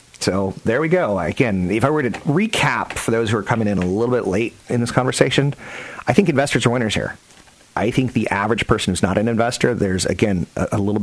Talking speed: 230 wpm